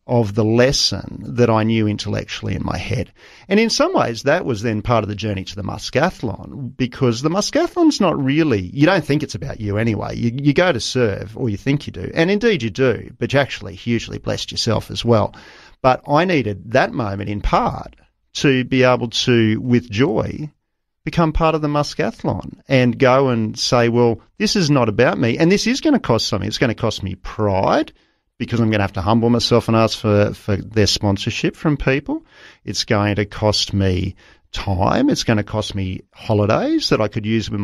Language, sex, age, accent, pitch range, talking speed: English, male, 40-59, Australian, 105-145 Hz, 210 wpm